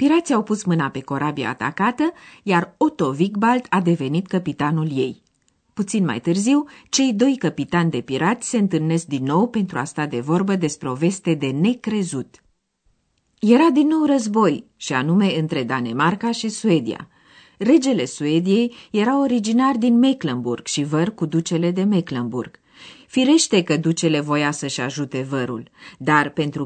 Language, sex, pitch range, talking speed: Romanian, female, 145-230 Hz, 150 wpm